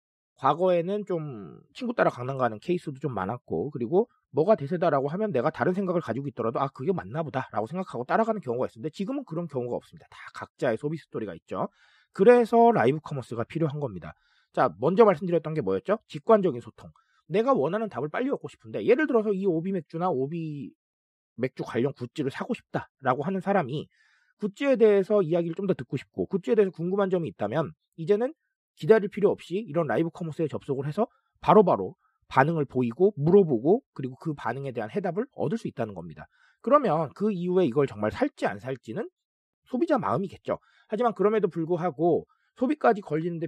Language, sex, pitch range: Korean, male, 135-205 Hz